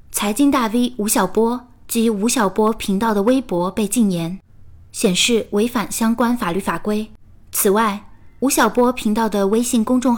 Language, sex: Chinese, female